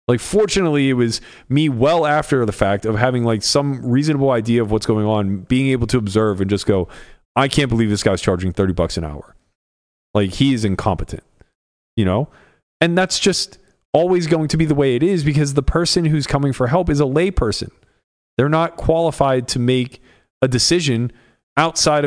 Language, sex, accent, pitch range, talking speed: English, male, American, 105-145 Hz, 195 wpm